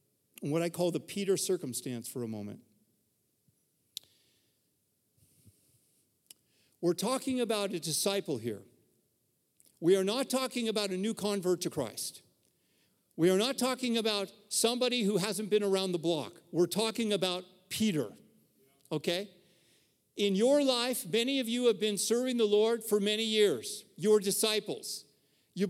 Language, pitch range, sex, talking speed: English, 185-240 Hz, male, 140 wpm